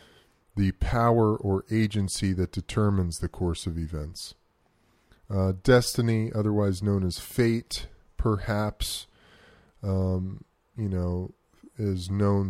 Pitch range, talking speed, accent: 90-105 Hz, 105 wpm, American